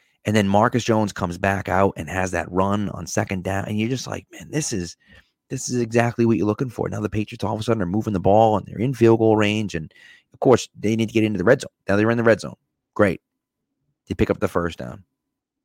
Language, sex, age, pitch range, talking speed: English, male, 30-49, 90-130 Hz, 270 wpm